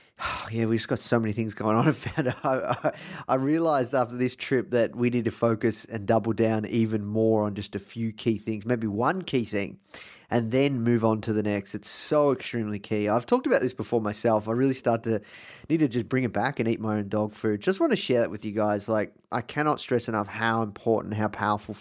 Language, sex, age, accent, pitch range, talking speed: English, male, 20-39, Australian, 110-135 Hz, 240 wpm